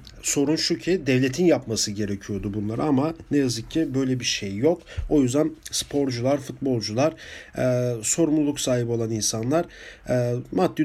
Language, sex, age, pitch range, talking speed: German, male, 40-59, 125-155 Hz, 145 wpm